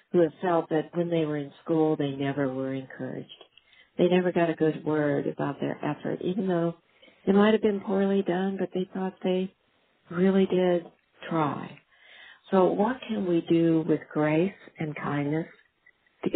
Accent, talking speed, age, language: American, 170 wpm, 60-79, English